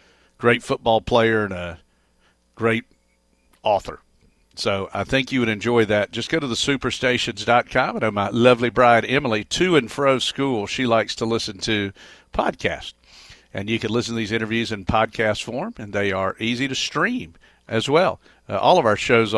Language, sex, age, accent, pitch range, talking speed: English, male, 50-69, American, 110-135 Hz, 175 wpm